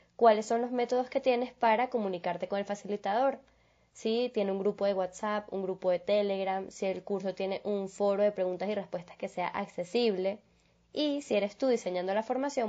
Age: 10-29